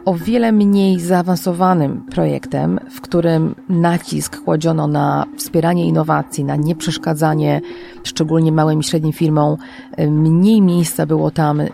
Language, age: Polish, 30-49